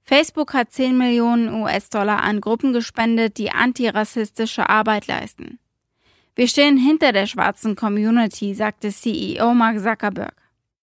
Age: 20-39